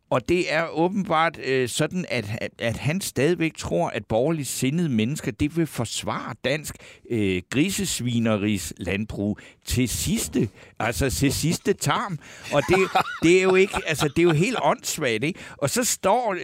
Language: Danish